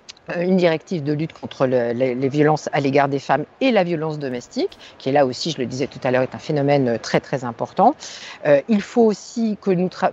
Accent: French